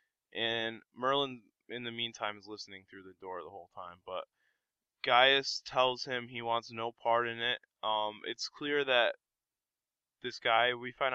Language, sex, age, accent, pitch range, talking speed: English, male, 20-39, American, 100-120 Hz, 165 wpm